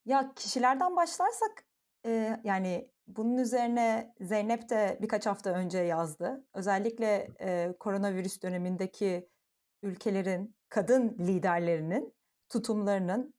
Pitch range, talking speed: 185-245 Hz, 95 wpm